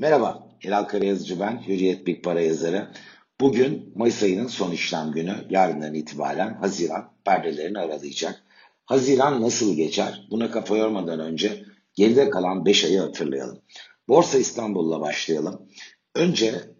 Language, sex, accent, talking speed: Turkish, male, native, 125 wpm